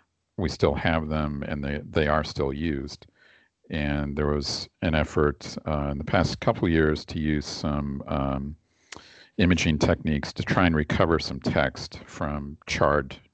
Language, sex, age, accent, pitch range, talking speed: English, male, 50-69, American, 75-80 Hz, 160 wpm